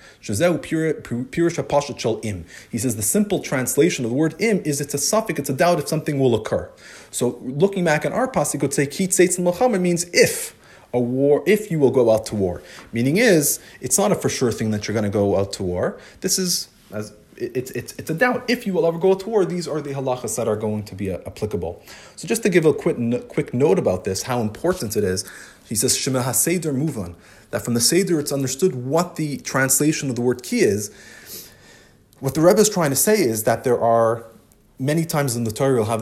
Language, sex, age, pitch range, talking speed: English, male, 30-49, 110-160 Hz, 220 wpm